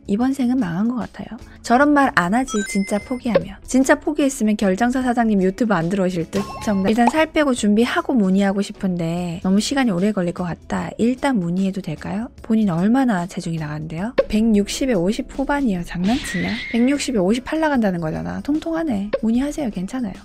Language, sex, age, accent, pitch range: Korean, female, 20-39, native, 190-245 Hz